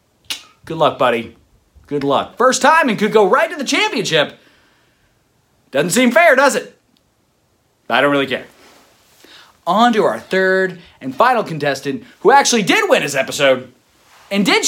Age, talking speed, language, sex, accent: 30-49, 155 wpm, English, male, American